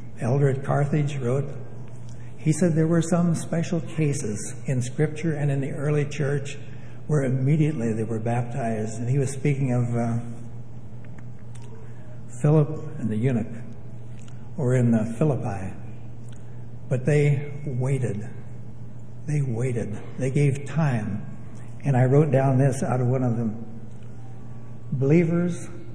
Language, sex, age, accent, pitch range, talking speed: English, male, 60-79, American, 120-145 Hz, 130 wpm